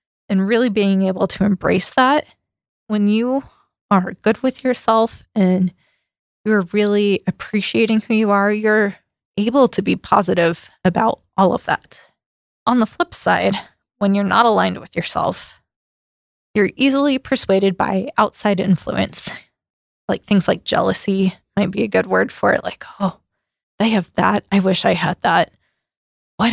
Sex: female